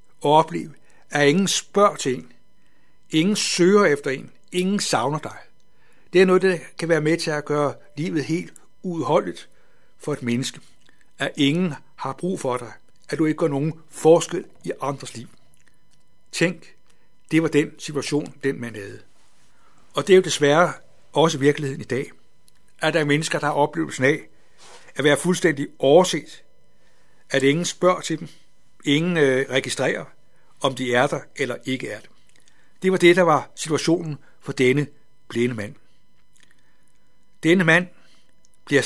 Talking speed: 160 wpm